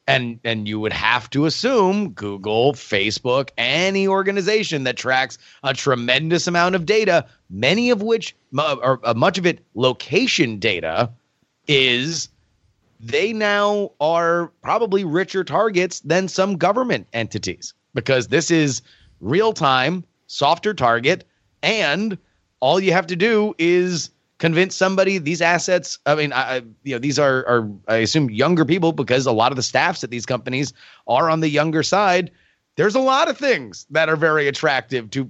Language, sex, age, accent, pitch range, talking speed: English, male, 30-49, American, 120-175 Hz, 160 wpm